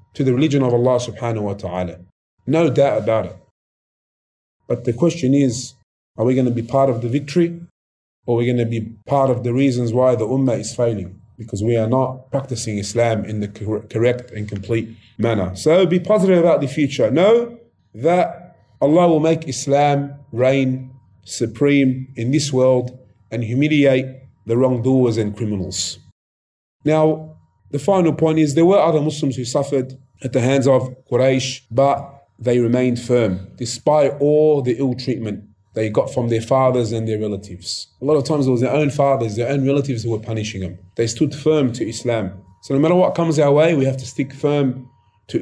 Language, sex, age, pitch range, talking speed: English, male, 30-49, 110-140 Hz, 190 wpm